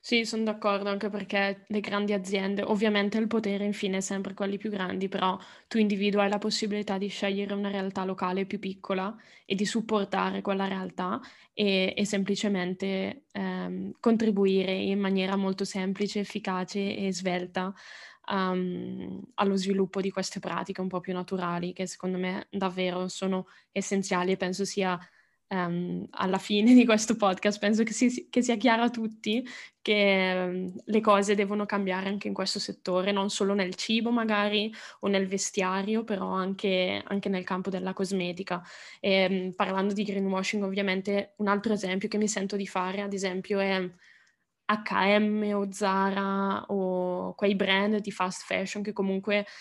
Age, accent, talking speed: 10-29, native, 155 wpm